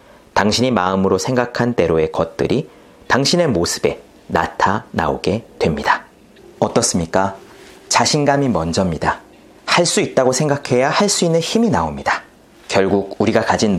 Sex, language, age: male, Korean, 40-59